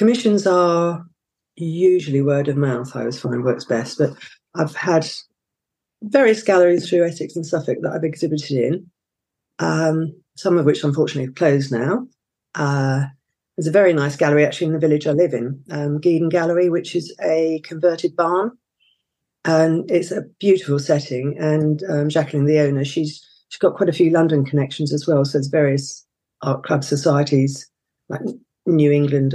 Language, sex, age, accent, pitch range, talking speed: English, female, 40-59, British, 145-175 Hz, 170 wpm